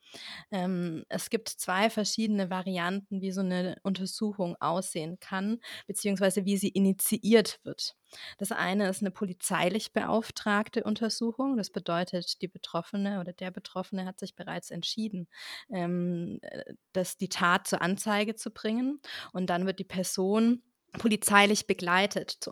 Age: 20-39